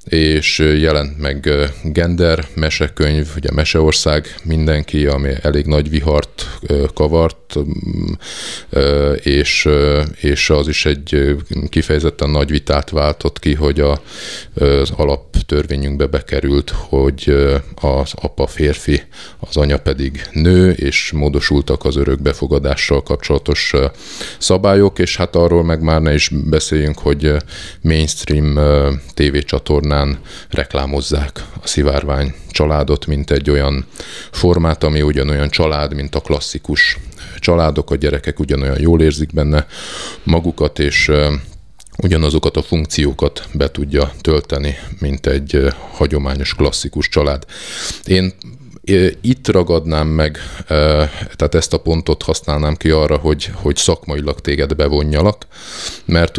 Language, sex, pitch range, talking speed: Hungarian, male, 70-80 Hz, 110 wpm